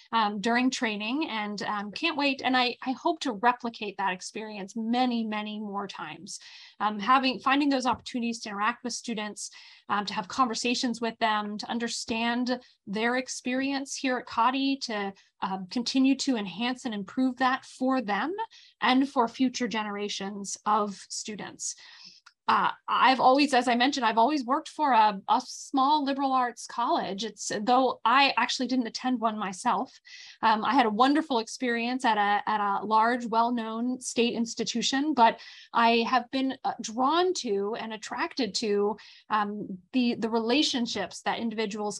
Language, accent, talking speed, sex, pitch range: English, American, 155 wpm, female, 215-260 Hz